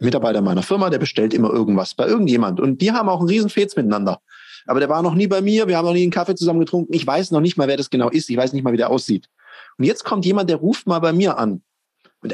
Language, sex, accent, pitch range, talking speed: German, male, German, 125-190 Hz, 280 wpm